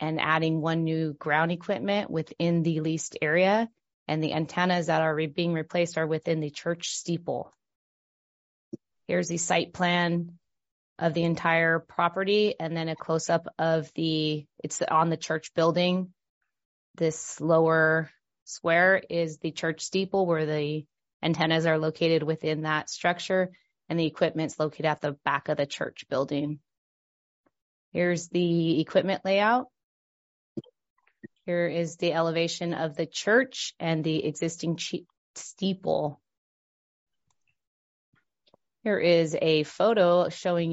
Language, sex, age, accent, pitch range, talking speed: English, female, 30-49, American, 155-170 Hz, 130 wpm